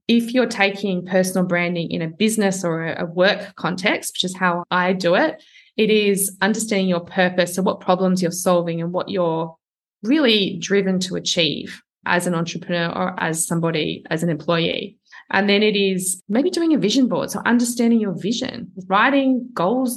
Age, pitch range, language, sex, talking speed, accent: 20-39, 180-220 Hz, English, female, 175 wpm, Australian